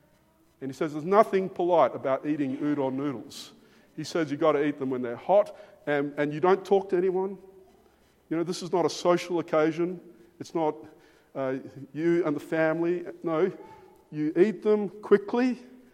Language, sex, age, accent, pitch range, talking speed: English, male, 50-69, Australian, 155-230 Hz, 175 wpm